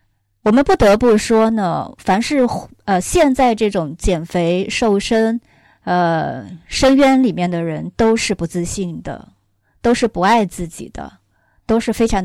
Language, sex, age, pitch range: Chinese, female, 20-39, 165-215 Hz